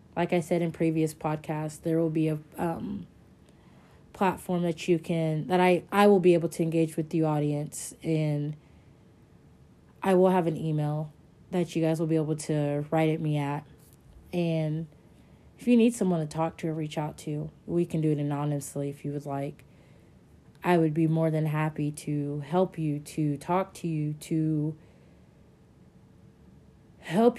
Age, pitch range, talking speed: 30-49, 155-180 Hz, 175 wpm